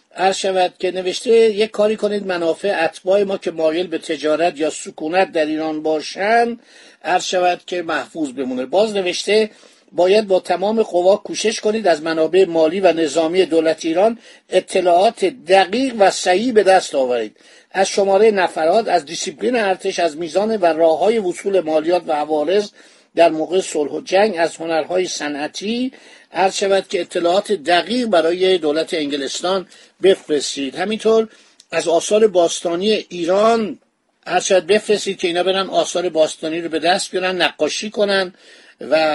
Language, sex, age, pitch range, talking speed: Persian, male, 50-69, 165-210 Hz, 145 wpm